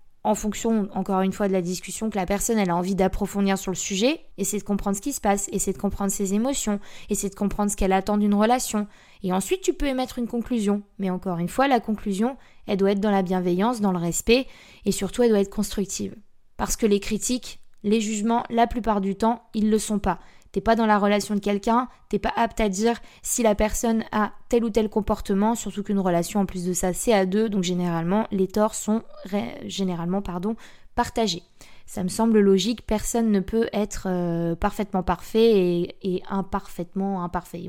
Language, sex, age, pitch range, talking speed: French, female, 20-39, 195-230 Hz, 215 wpm